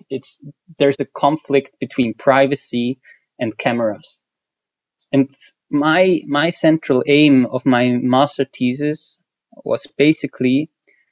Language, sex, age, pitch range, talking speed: German, male, 20-39, 125-145 Hz, 105 wpm